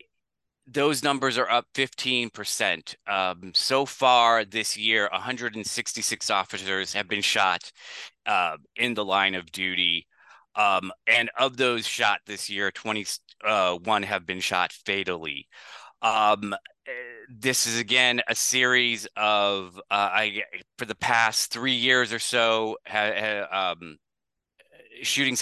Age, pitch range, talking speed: 30-49, 100-125 Hz, 125 wpm